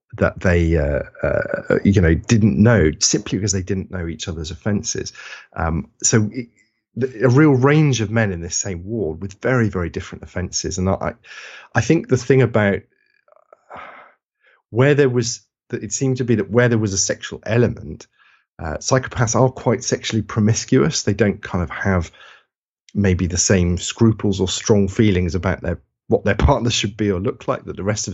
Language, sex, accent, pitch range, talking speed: English, male, British, 90-115 Hz, 185 wpm